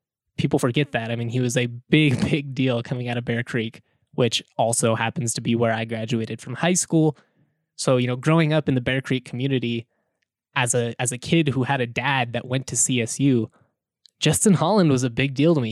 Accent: American